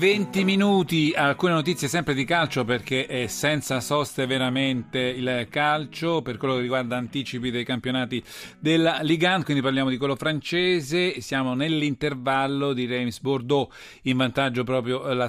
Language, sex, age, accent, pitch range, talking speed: Italian, male, 40-59, native, 125-155 Hz, 145 wpm